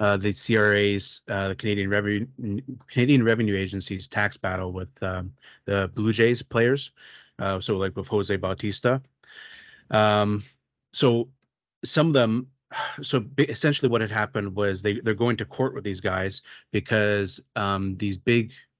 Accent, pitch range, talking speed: American, 95-115 Hz, 155 wpm